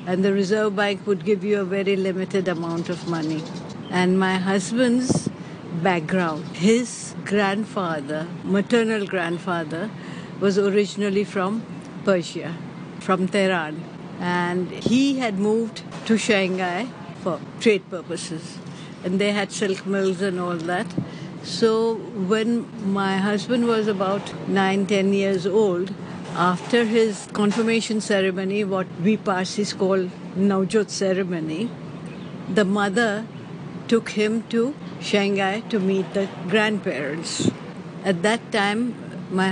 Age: 60-79